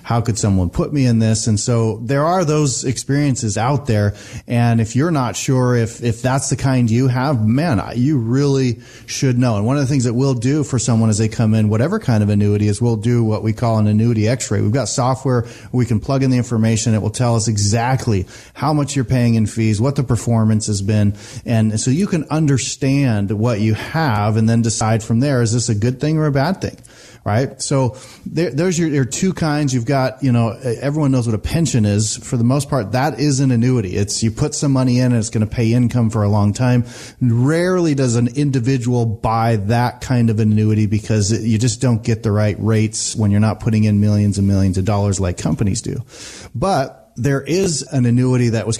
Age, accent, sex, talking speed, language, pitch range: 30-49, American, male, 225 wpm, English, 110-135 Hz